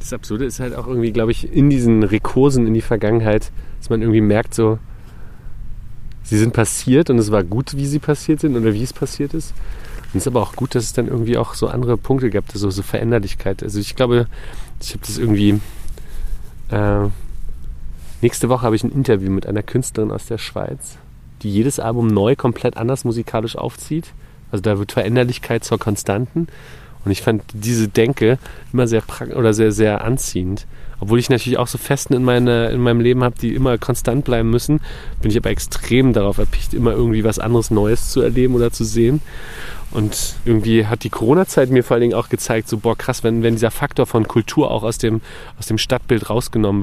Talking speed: 205 wpm